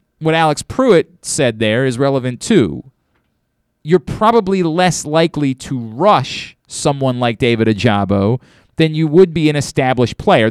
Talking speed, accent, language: 145 wpm, American, English